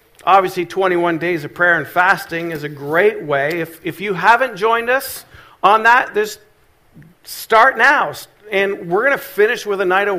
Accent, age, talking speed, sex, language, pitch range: American, 50-69, 185 wpm, male, English, 155-220 Hz